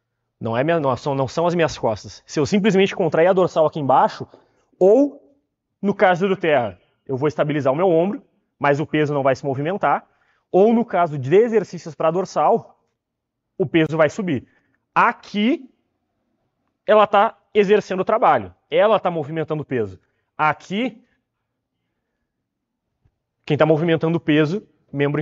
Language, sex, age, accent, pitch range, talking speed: Portuguese, male, 20-39, Brazilian, 145-190 Hz, 150 wpm